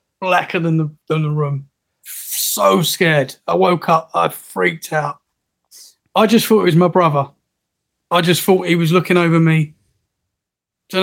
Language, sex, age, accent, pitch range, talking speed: English, male, 30-49, British, 155-195 Hz, 165 wpm